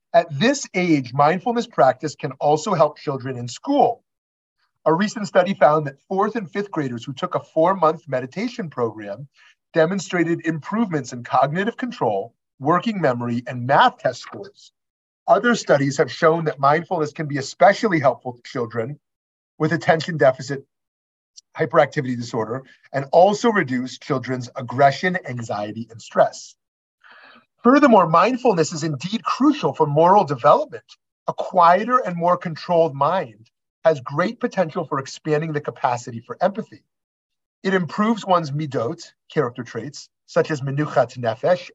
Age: 30-49